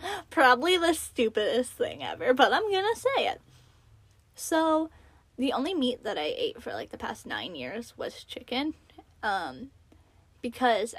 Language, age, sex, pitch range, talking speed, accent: English, 10-29, female, 230-310 Hz, 145 wpm, American